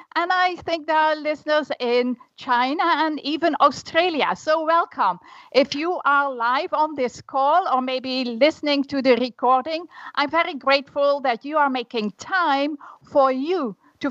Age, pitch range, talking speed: 50-69, 250-310 Hz, 155 wpm